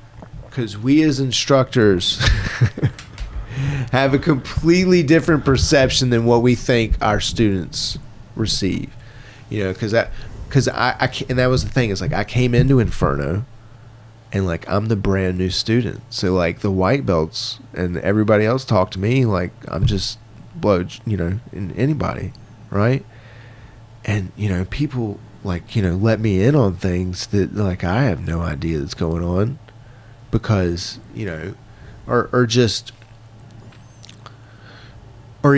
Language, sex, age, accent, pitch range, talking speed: English, male, 30-49, American, 105-125 Hz, 150 wpm